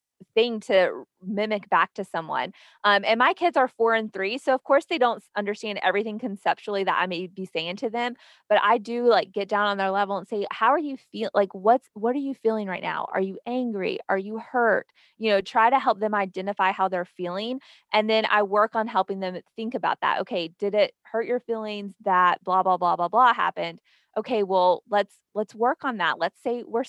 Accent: American